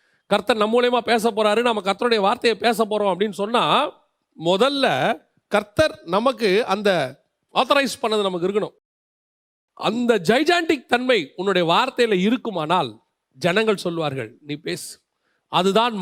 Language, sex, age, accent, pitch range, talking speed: Tamil, male, 40-59, native, 190-270 Hz, 115 wpm